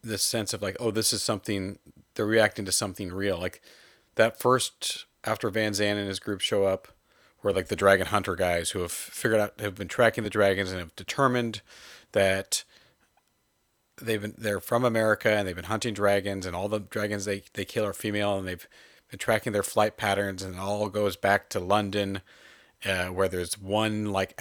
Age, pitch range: 40-59, 95-110 Hz